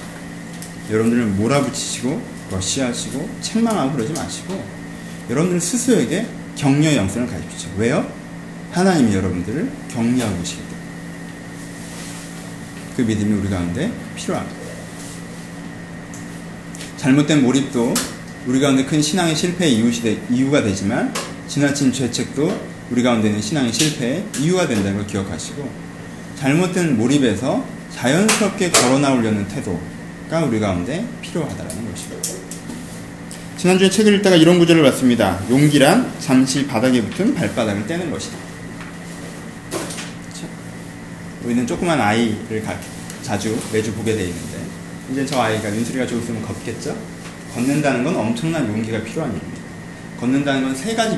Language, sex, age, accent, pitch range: Korean, male, 30-49, native, 105-155 Hz